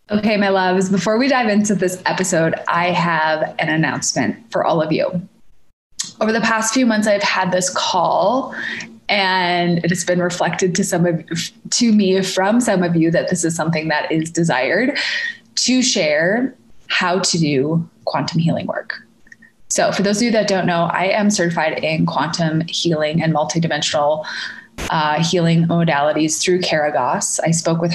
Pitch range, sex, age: 170-215 Hz, female, 20-39